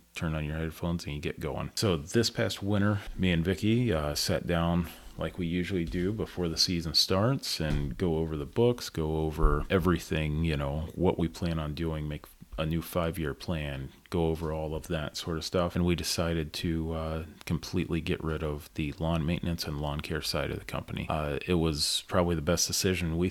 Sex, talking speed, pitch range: male, 210 wpm, 80-90 Hz